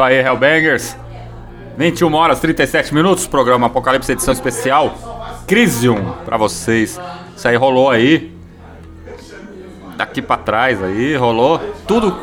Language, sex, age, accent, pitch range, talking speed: Portuguese, male, 30-49, Brazilian, 100-135 Hz, 115 wpm